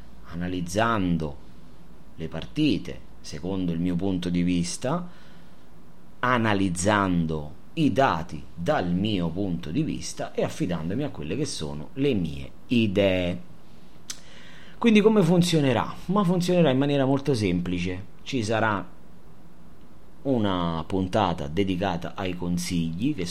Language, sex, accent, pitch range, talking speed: Italian, male, native, 85-130 Hz, 110 wpm